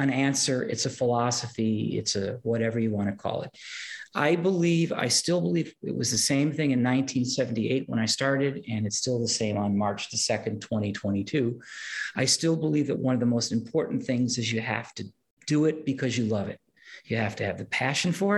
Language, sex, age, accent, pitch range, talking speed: English, male, 40-59, American, 120-165 Hz, 210 wpm